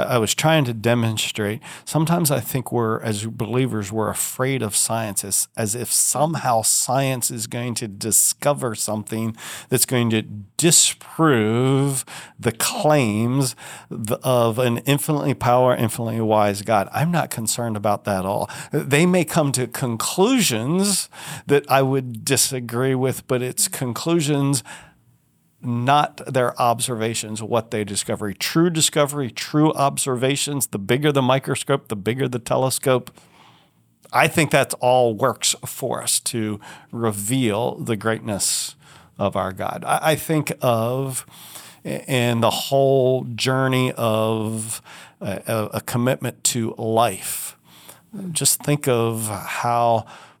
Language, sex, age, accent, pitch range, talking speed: English, male, 40-59, American, 110-140 Hz, 125 wpm